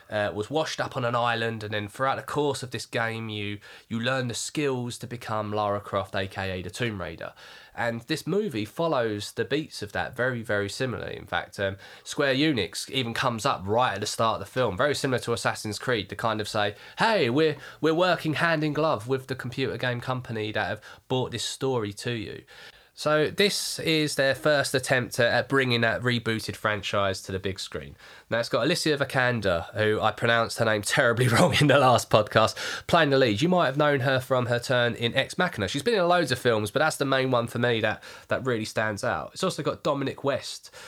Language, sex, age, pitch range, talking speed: English, male, 20-39, 110-140 Hz, 220 wpm